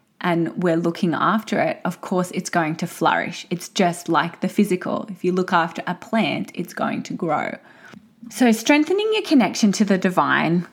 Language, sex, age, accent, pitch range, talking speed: English, female, 20-39, Australian, 170-225 Hz, 185 wpm